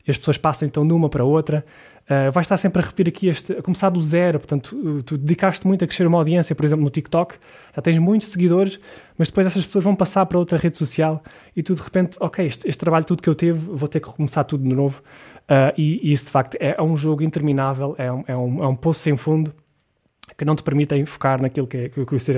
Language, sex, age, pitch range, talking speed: Portuguese, male, 20-39, 140-165 Hz, 255 wpm